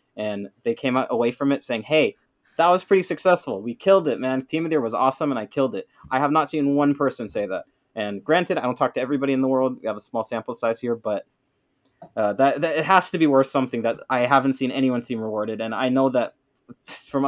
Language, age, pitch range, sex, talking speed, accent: English, 20-39, 115-150 Hz, male, 255 wpm, American